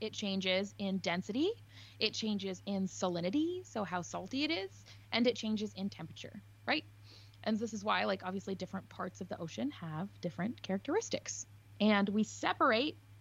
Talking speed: 165 wpm